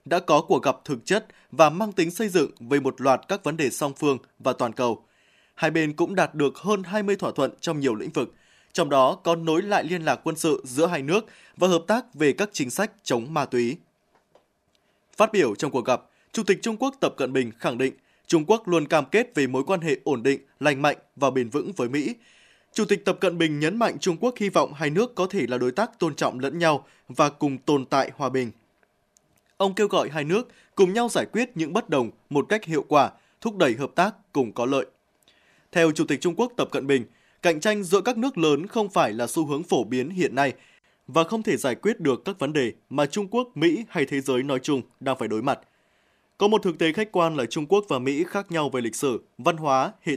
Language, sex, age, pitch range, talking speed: Vietnamese, male, 20-39, 135-200 Hz, 245 wpm